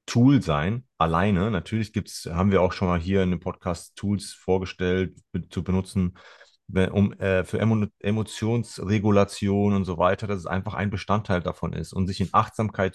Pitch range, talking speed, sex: 90-110 Hz, 170 wpm, male